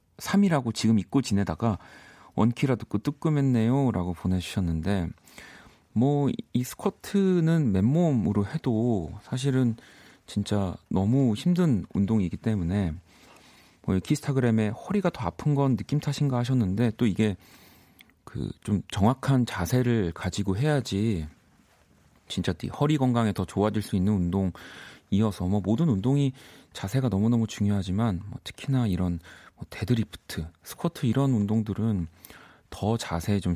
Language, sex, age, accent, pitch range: Korean, male, 40-59, native, 95-130 Hz